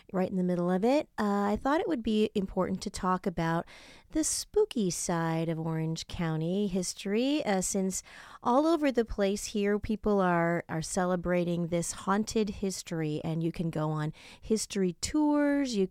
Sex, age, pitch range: female, 30-49, 165-215 Hz